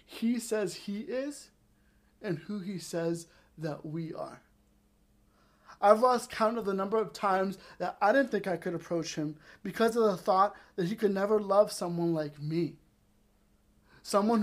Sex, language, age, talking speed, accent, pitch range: male, English, 20-39, 165 wpm, American, 170-225 Hz